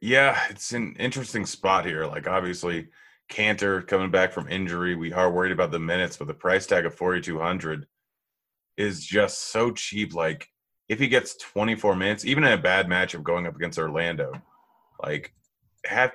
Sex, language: male, English